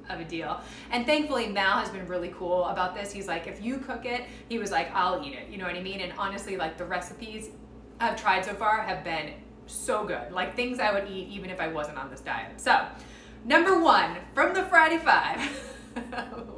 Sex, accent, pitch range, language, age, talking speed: female, American, 180-235 Hz, English, 20-39, 225 wpm